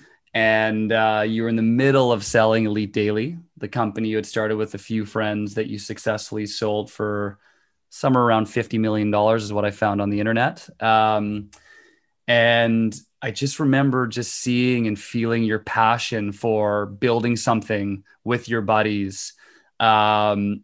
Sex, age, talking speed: male, 20-39, 155 wpm